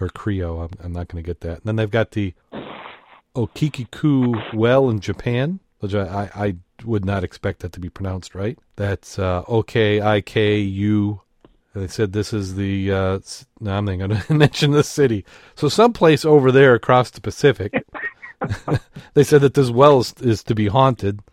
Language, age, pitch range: English, 40-59, 95-115 Hz